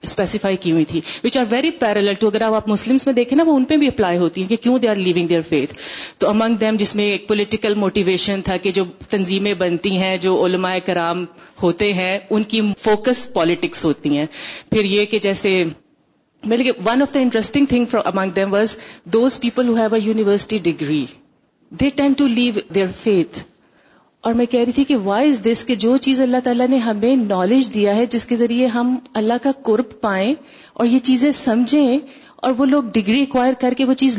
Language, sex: Urdu, female